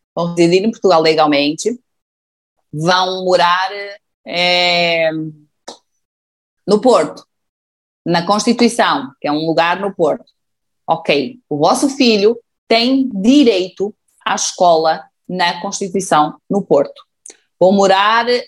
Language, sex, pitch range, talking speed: Portuguese, female, 165-230 Hz, 105 wpm